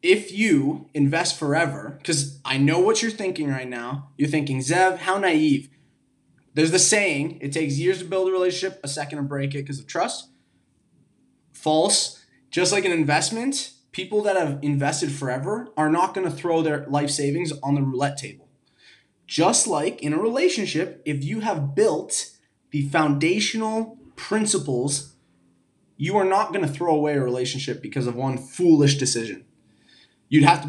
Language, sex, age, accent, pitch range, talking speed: English, male, 20-39, American, 140-175 Hz, 170 wpm